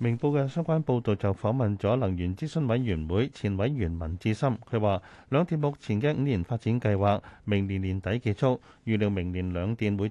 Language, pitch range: Chinese, 100-130 Hz